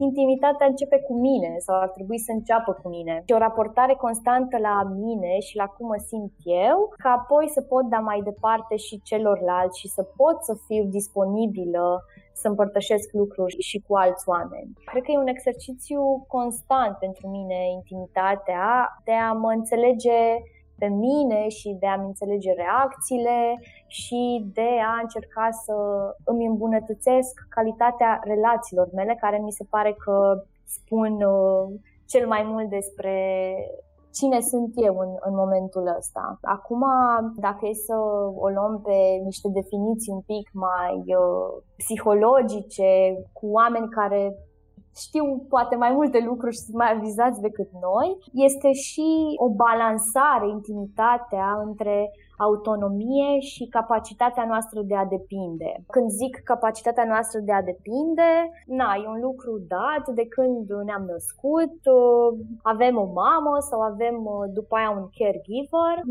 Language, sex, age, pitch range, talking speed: Romanian, female, 20-39, 200-245 Hz, 140 wpm